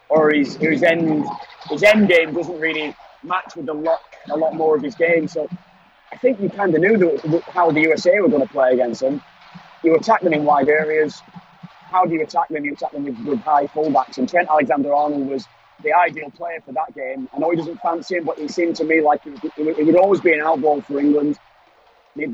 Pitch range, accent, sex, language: 150-175 Hz, British, male, English